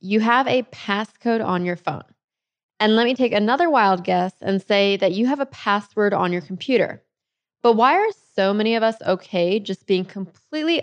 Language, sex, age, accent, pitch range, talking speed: English, female, 20-39, American, 190-240 Hz, 195 wpm